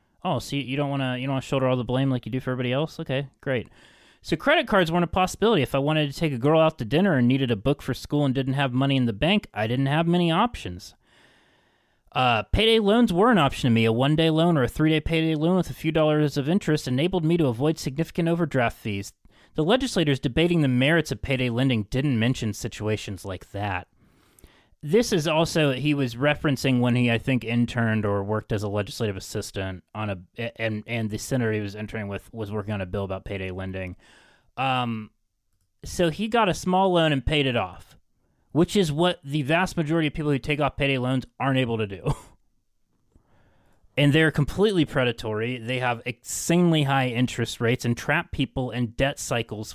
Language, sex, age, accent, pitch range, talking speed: English, male, 30-49, American, 110-155 Hz, 210 wpm